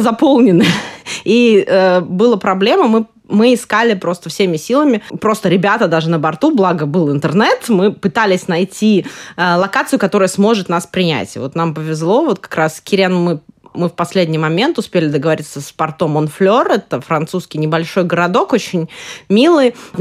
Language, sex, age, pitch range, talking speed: Russian, female, 20-39, 165-215 Hz, 160 wpm